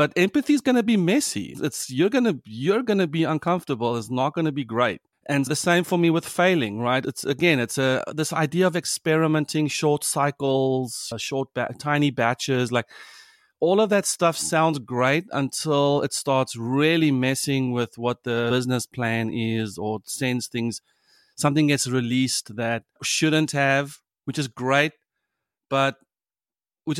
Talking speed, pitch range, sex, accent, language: 165 wpm, 125-180 Hz, male, South African, English